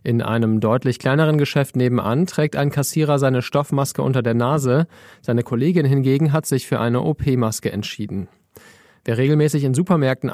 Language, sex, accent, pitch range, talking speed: German, male, German, 120-145 Hz, 155 wpm